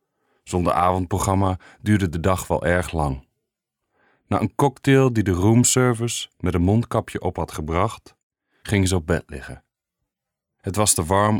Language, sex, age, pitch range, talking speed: English, male, 40-59, 90-110 Hz, 155 wpm